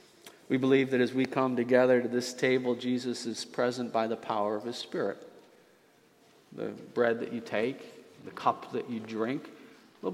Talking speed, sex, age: 180 wpm, male, 50-69